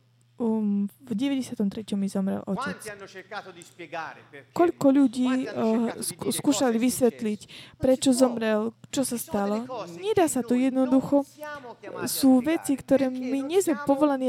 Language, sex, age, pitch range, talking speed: Slovak, female, 20-39, 230-275 Hz, 115 wpm